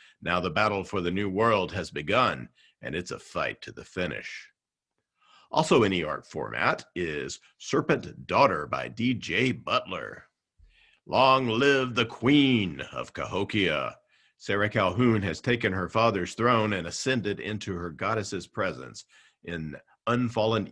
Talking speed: 140 wpm